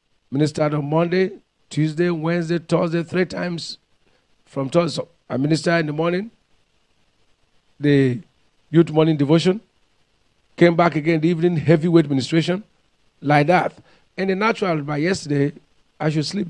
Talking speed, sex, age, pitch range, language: 130 wpm, male, 50-69, 155-195 Hz, English